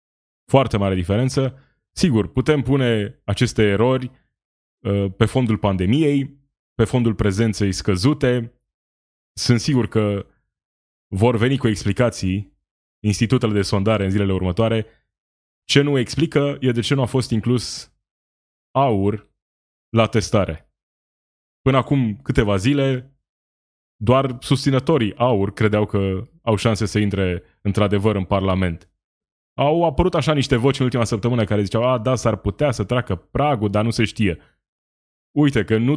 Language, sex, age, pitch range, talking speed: Romanian, male, 20-39, 100-125 Hz, 135 wpm